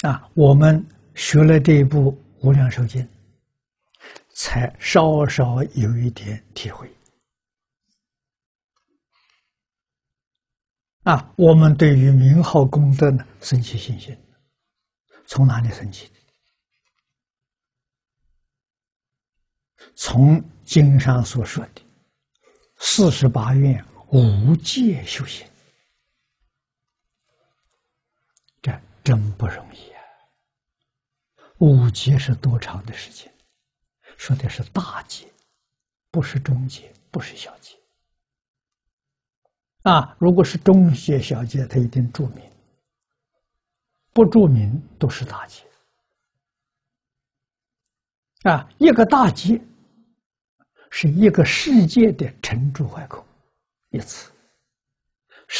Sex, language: male, Chinese